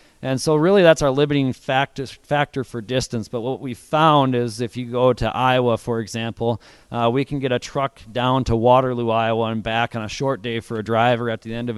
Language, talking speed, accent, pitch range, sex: English, 225 wpm, American, 110-125 Hz, male